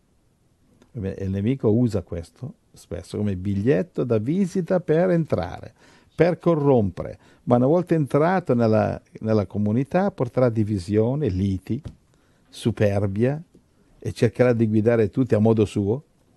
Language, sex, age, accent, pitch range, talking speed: Italian, male, 50-69, native, 95-125 Hz, 115 wpm